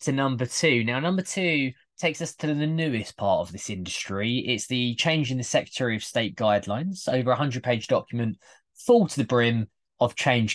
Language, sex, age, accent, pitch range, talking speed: English, male, 20-39, British, 110-150 Hz, 200 wpm